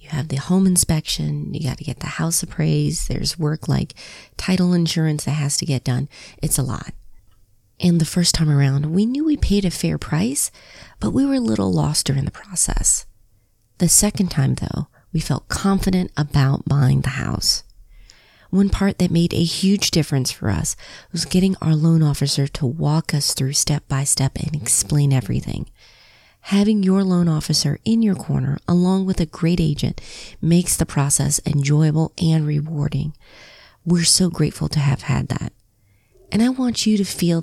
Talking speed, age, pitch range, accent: 175 wpm, 30-49, 140-175 Hz, American